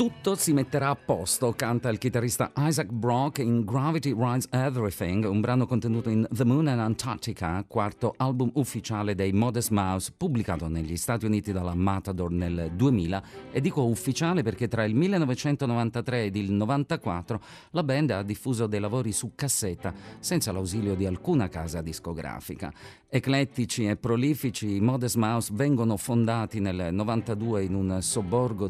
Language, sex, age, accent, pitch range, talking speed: Italian, male, 40-59, native, 95-130 Hz, 155 wpm